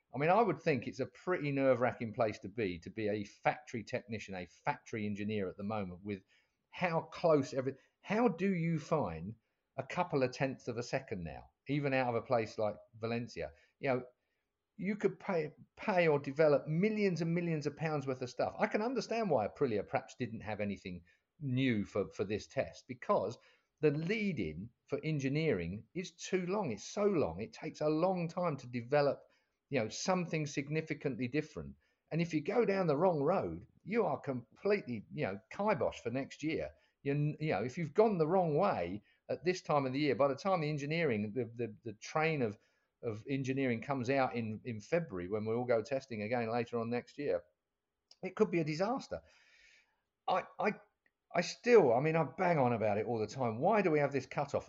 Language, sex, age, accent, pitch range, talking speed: English, male, 50-69, British, 115-165 Hz, 200 wpm